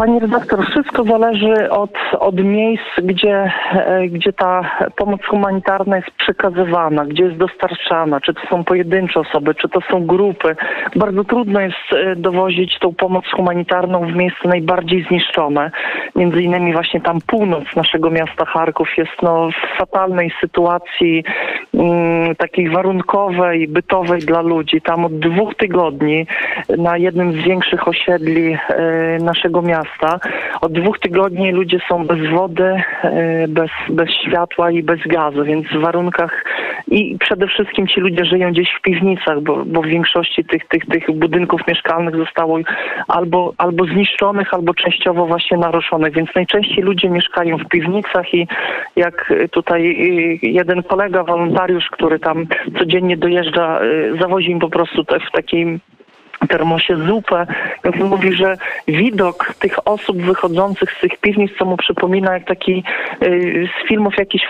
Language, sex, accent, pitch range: Polish, male, native, 170-190 Hz